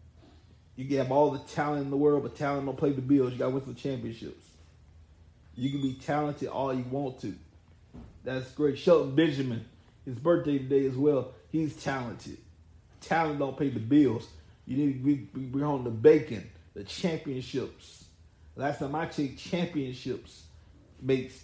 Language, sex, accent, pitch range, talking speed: English, male, American, 110-145 Hz, 170 wpm